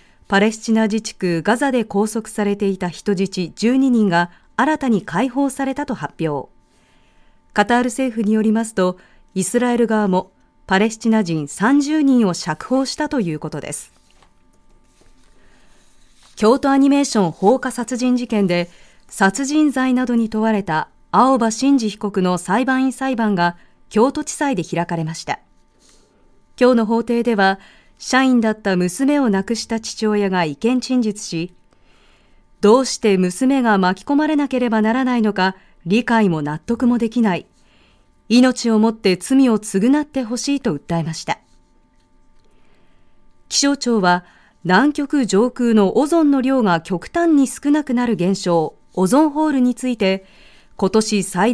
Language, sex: Japanese, female